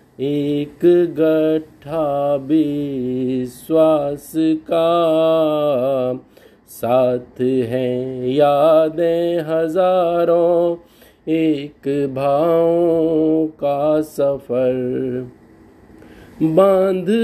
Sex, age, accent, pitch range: male, 50-69, native, 140-170 Hz